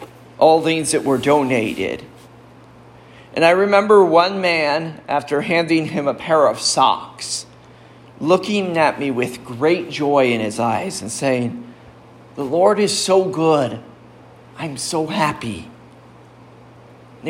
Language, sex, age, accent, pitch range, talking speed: English, male, 50-69, American, 130-180 Hz, 130 wpm